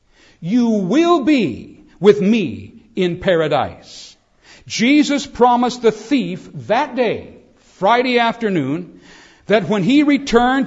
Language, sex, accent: English, male, American